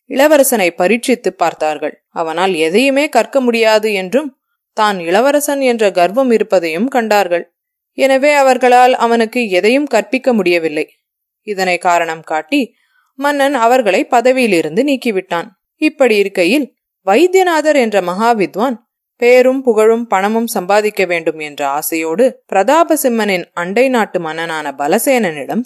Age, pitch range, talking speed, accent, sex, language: 20-39, 185-265 Hz, 105 wpm, Indian, female, English